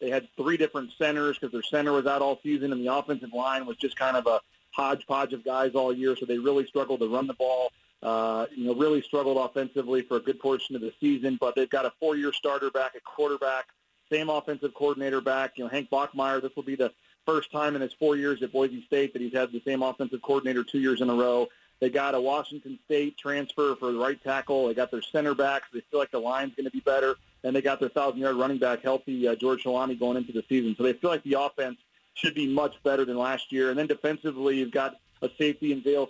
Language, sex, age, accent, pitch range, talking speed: English, male, 40-59, American, 130-145 Hz, 250 wpm